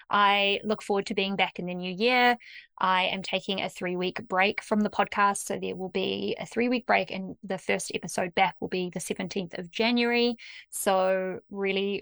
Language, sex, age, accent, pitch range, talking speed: English, female, 20-39, Australian, 180-215 Hz, 205 wpm